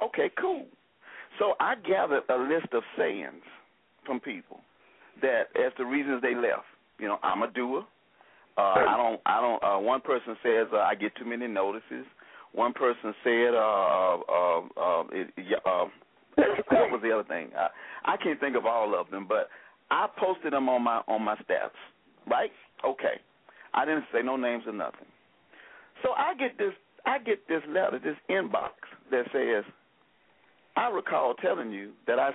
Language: English